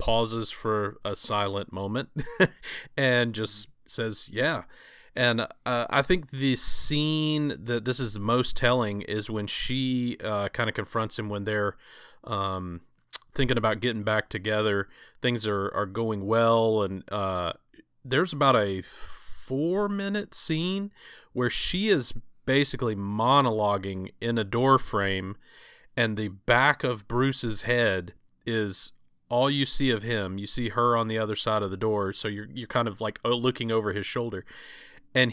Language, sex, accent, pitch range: English, male, American, 105-130 Hz